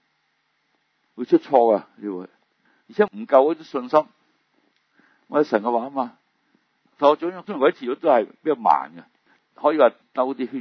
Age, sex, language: 60-79, male, Chinese